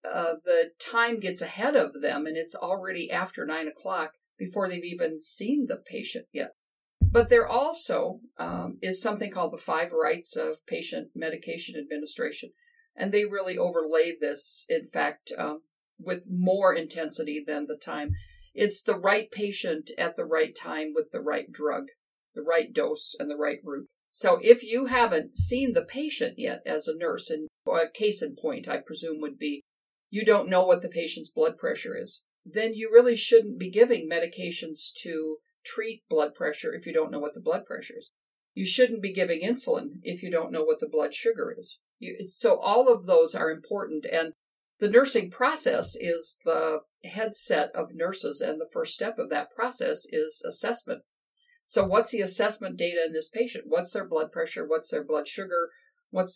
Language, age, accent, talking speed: English, 50-69, American, 185 wpm